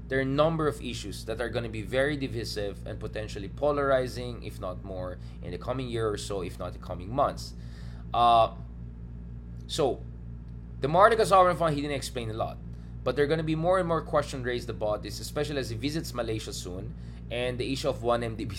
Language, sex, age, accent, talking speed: English, male, 20-39, Filipino, 210 wpm